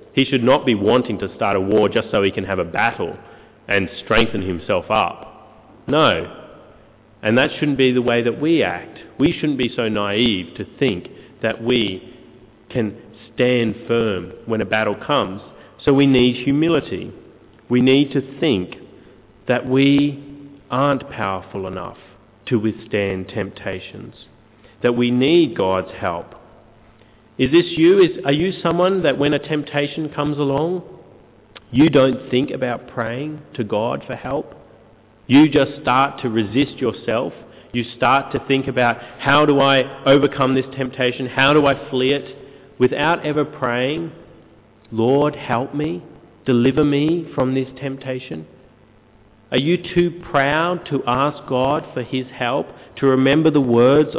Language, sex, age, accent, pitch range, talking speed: English, male, 30-49, Australian, 115-145 Hz, 150 wpm